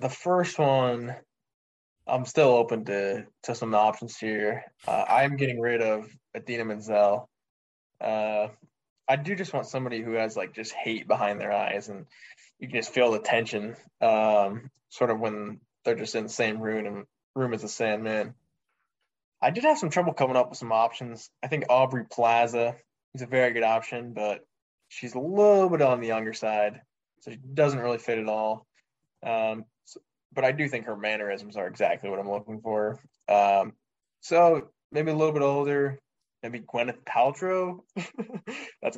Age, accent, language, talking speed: 20-39, American, English, 175 wpm